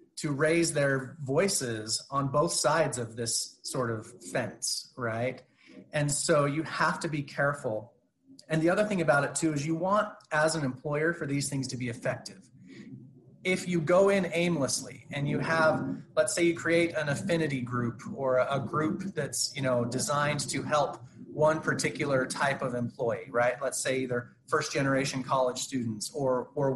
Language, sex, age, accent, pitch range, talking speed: English, male, 30-49, American, 130-170 Hz, 175 wpm